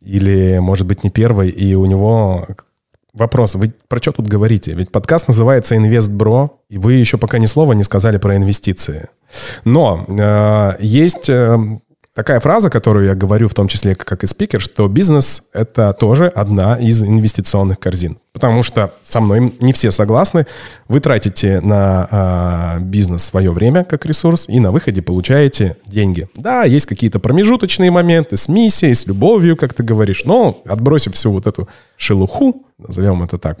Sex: male